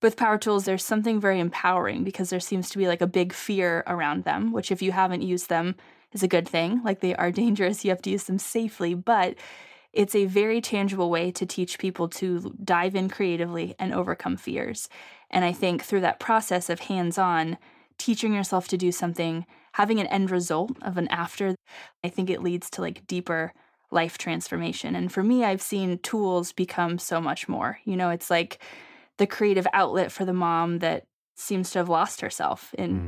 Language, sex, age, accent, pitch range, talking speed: English, female, 20-39, American, 175-200 Hz, 200 wpm